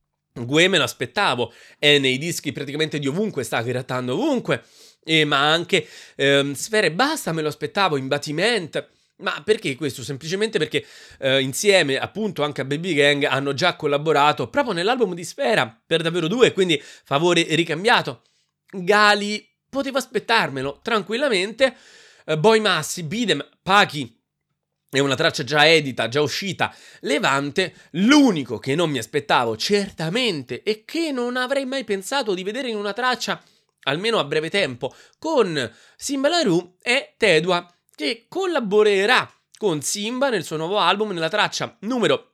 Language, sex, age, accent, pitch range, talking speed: Italian, male, 30-49, native, 145-220 Hz, 145 wpm